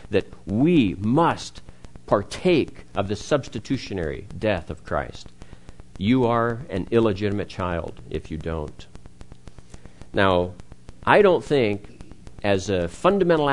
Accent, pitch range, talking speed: American, 90-135 Hz, 110 wpm